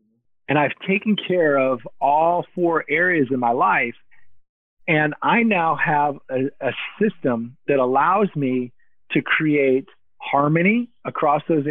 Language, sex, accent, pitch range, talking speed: English, male, American, 130-165 Hz, 135 wpm